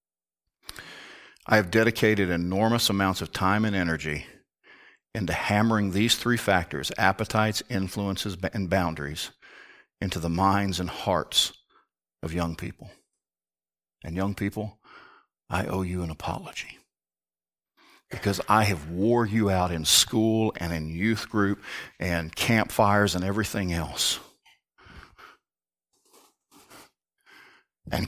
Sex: male